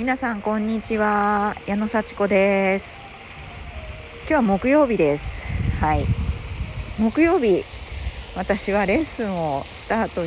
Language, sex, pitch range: Japanese, female, 145-215 Hz